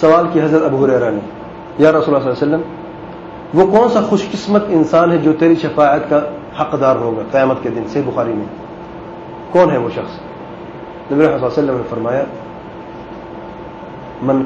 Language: English